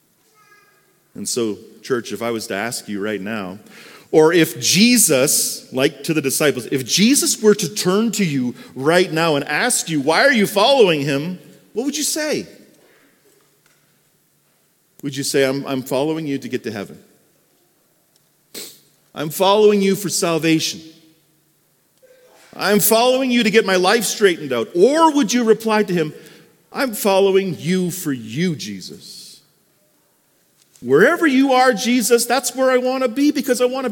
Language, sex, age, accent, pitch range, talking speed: English, male, 40-59, American, 155-245 Hz, 160 wpm